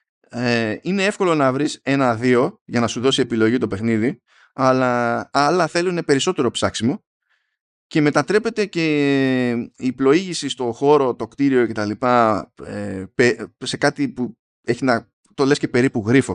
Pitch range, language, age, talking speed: 115-155 Hz, Greek, 20-39, 135 wpm